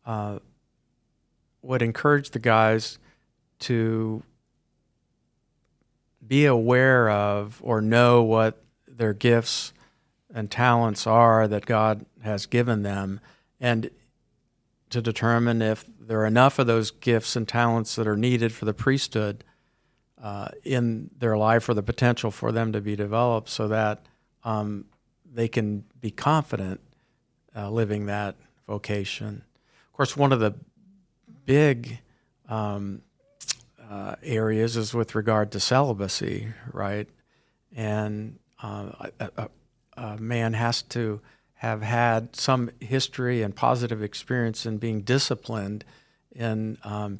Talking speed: 120 wpm